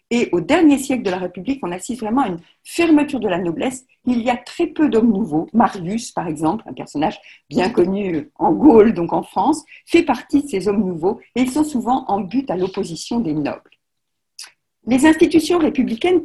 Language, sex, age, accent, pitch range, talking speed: French, female, 50-69, French, 205-300 Hz, 200 wpm